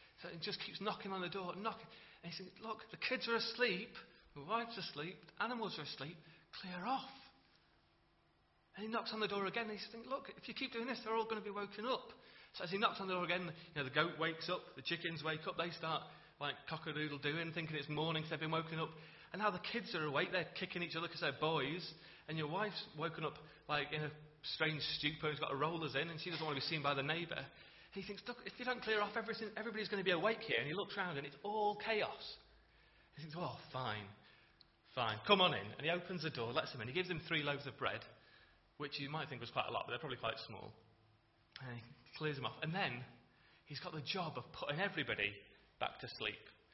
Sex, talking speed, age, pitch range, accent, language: male, 255 wpm, 30-49, 140-190 Hz, British, English